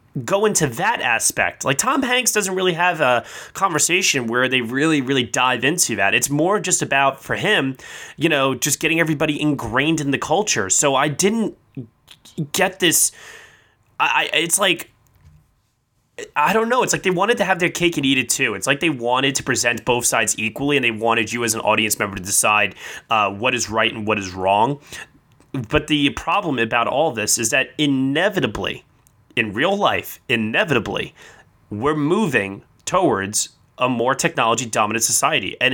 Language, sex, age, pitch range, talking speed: English, male, 20-39, 120-155 Hz, 175 wpm